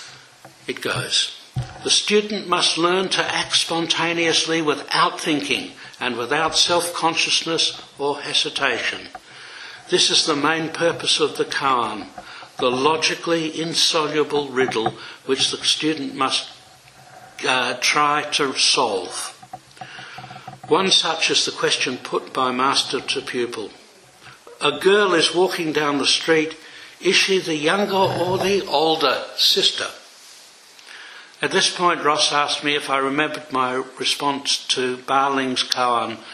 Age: 60-79